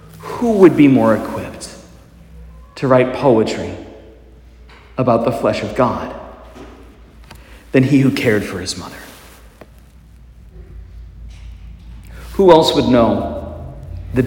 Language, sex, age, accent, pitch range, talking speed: English, male, 40-59, American, 80-115 Hz, 105 wpm